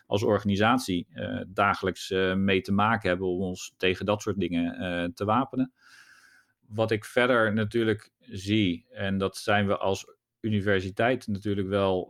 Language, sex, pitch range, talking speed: Dutch, male, 100-115 Hz, 155 wpm